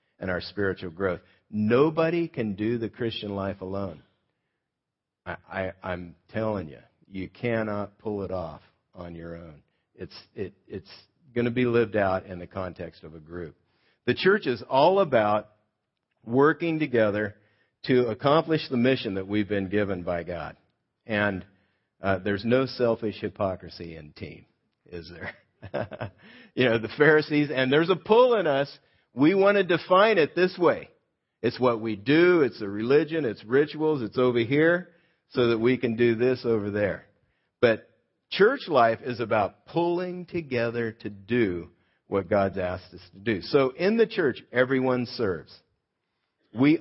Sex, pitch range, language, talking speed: male, 95-135 Hz, English, 155 wpm